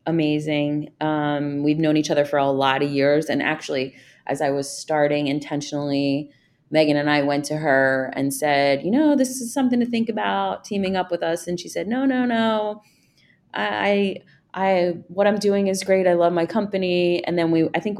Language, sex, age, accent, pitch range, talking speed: English, female, 30-49, American, 150-190 Hz, 200 wpm